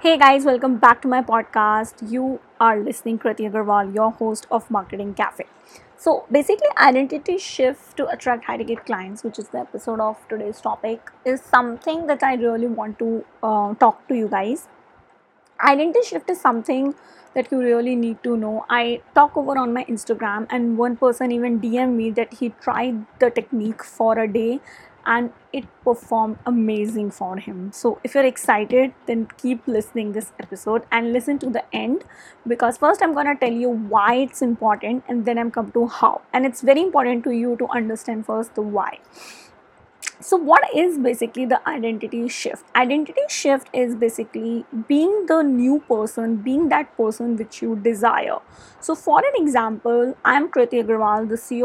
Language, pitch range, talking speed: English, 225-260 Hz, 180 wpm